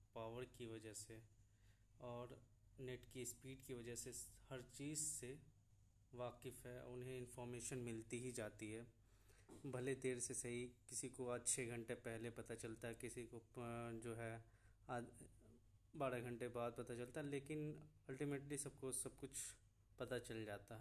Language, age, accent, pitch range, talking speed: Hindi, 20-39, native, 115-140 Hz, 155 wpm